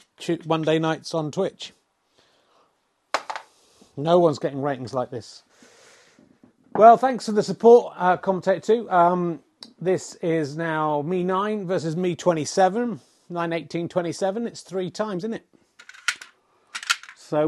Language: English